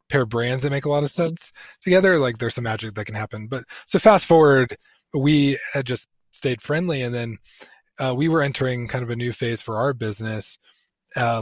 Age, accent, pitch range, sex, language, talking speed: 20-39, American, 115-140 Hz, male, English, 215 wpm